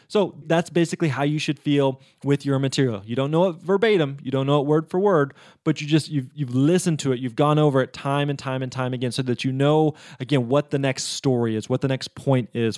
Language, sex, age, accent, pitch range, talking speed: English, male, 20-39, American, 130-170 Hz, 265 wpm